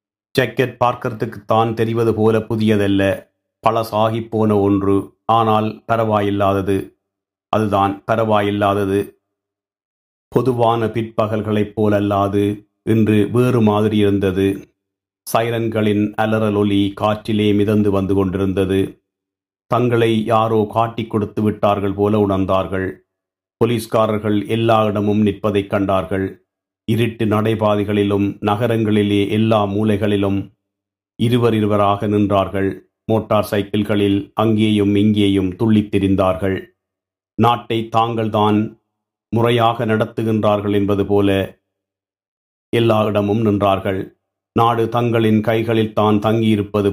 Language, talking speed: Tamil, 80 wpm